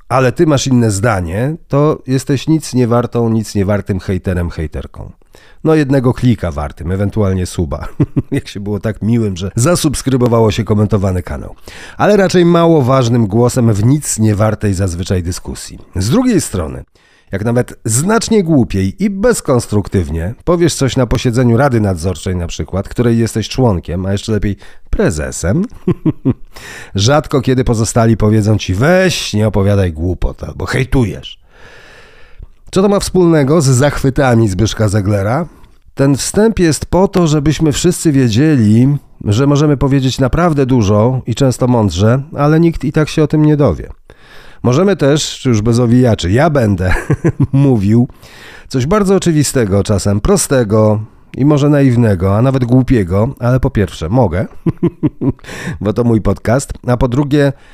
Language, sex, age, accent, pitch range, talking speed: Polish, male, 40-59, native, 105-145 Hz, 145 wpm